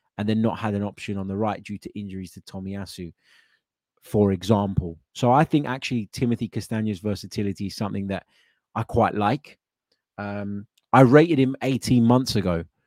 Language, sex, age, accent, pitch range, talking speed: English, male, 20-39, British, 95-115 Hz, 170 wpm